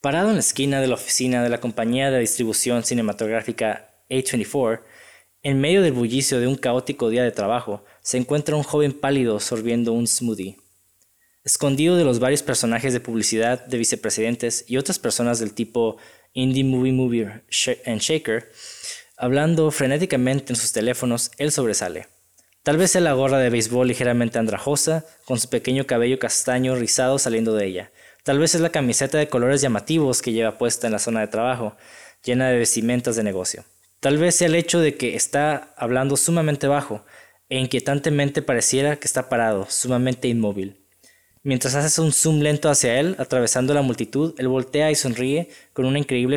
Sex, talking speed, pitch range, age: male, 170 wpm, 115-145 Hz, 20-39